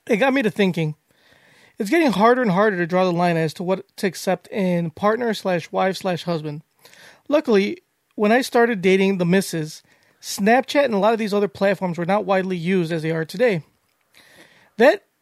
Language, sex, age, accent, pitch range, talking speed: English, male, 30-49, American, 175-225 Hz, 195 wpm